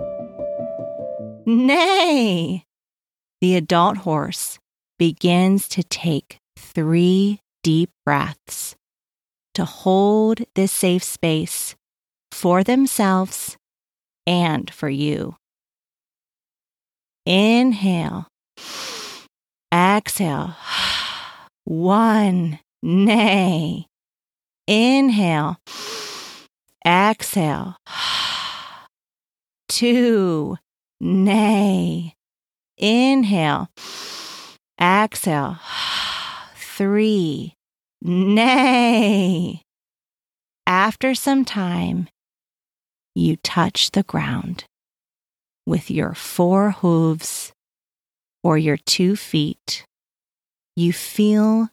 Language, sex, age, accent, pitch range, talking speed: English, female, 40-59, American, 170-240 Hz, 55 wpm